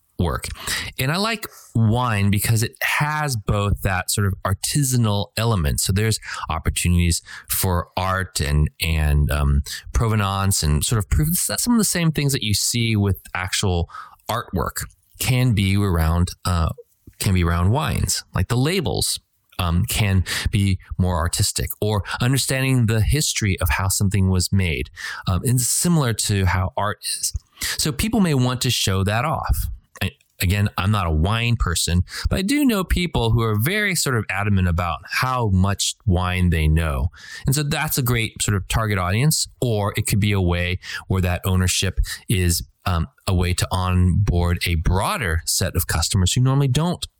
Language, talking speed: English, 170 wpm